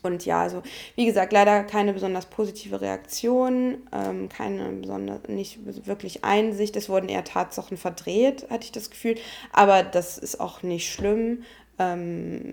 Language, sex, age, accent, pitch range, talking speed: German, female, 20-39, German, 175-210 Hz, 155 wpm